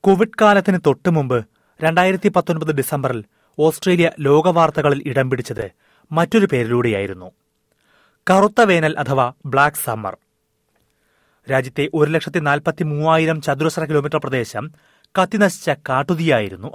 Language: Malayalam